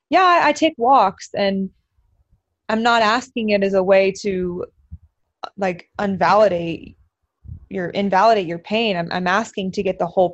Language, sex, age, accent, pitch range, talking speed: English, female, 20-39, American, 185-235 Hz, 155 wpm